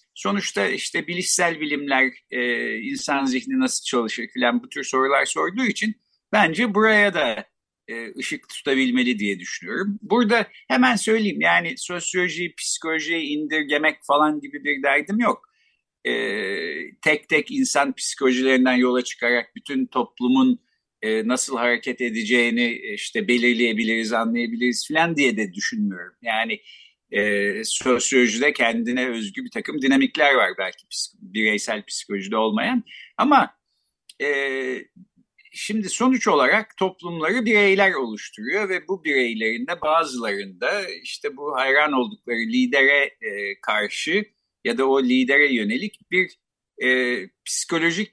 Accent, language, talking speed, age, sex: native, Turkish, 115 wpm, 50-69, male